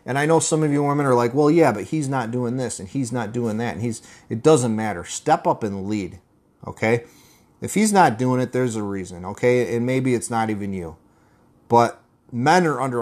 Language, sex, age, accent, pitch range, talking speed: English, male, 30-49, American, 105-125 Hz, 230 wpm